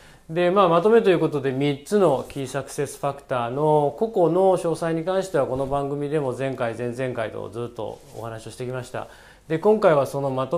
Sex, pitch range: male, 125-175 Hz